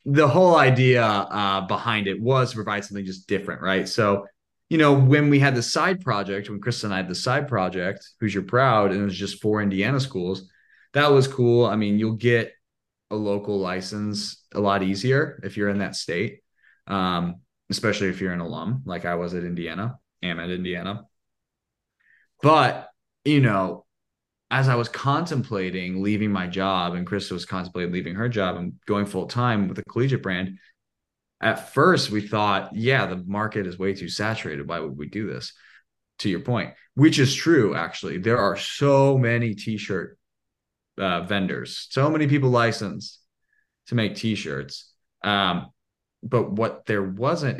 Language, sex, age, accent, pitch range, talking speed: English, male, 20-39, American, 95-120 Hz, 175 wpm